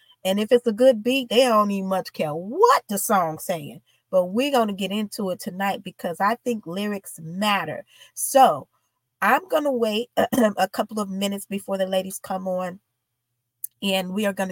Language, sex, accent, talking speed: English, female, American, 190 wpm